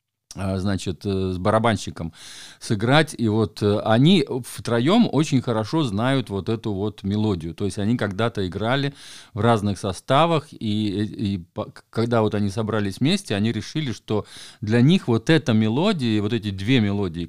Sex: male